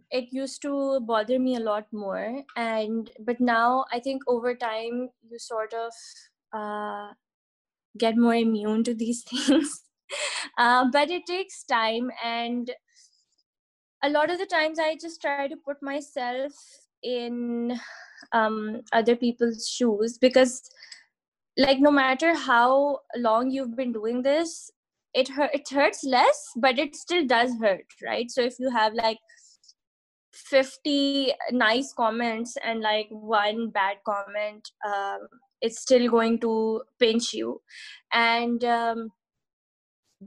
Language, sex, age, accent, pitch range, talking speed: English, female, 20-39, Indian, 220-270 Hz, 135 wpm